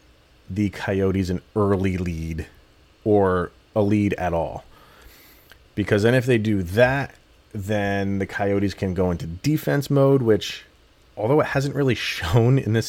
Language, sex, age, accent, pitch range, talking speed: English, male, 30-49, American, 90-115 Hz, 150 wpm